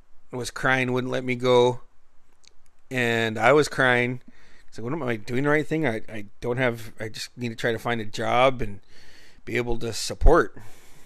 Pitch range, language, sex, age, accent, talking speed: 115-130 Hz, English, male, 40-59, American, 195 wpm